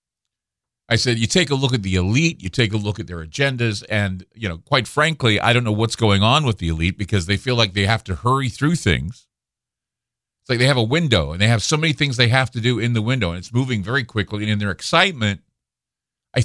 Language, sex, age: English, male, 50-69